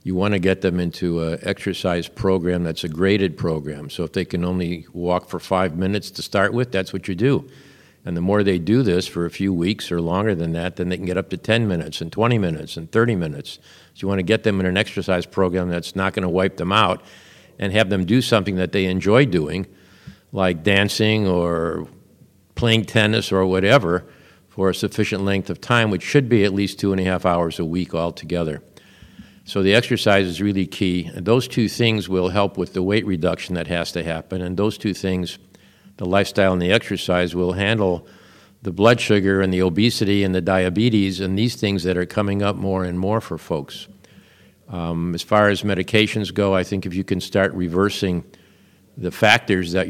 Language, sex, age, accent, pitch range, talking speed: English, male, 50-69, American, 90-105 Hz, 210 wpm